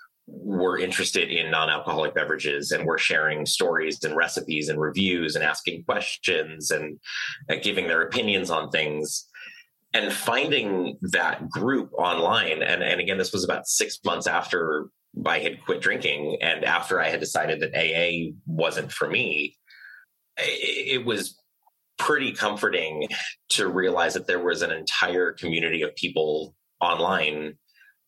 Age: 30-49